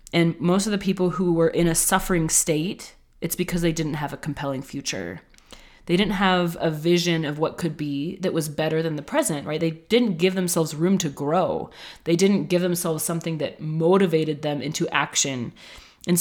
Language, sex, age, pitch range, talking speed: English, female, 20-39, 155-180 Hz, 195 wpm